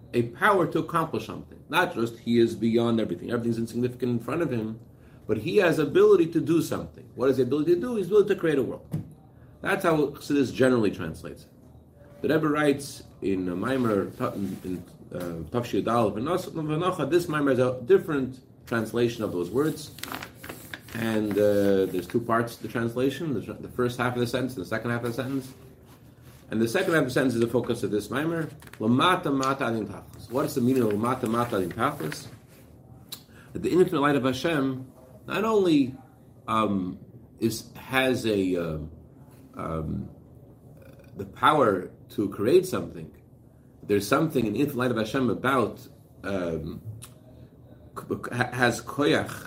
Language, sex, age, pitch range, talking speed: English, male, 40-59, 110-140 Hz, 160 wpm